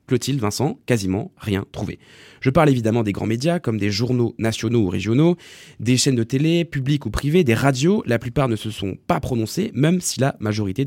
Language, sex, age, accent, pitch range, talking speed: French, male, 20-39, French, 110-145 Hz, 205 wpm